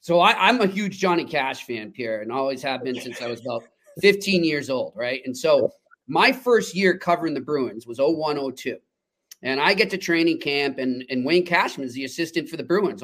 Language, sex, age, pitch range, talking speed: English, male, 40-59, 130-175 Hz, 220 wpm